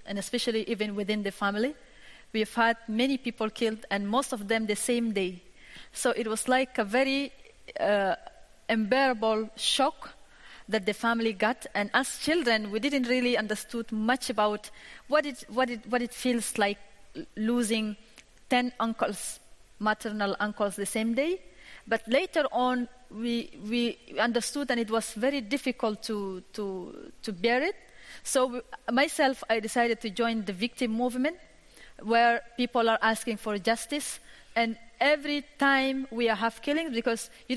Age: 30-49